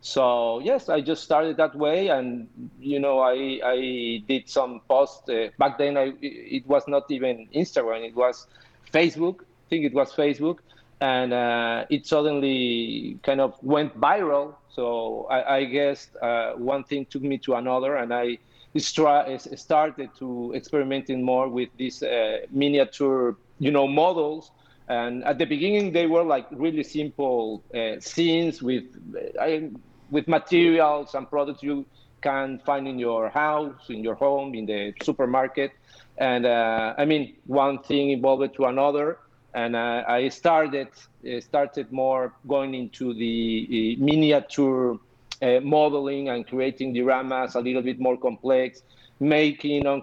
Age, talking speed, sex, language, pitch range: 50-69, 150 wpm, male, English, 125-145 Hz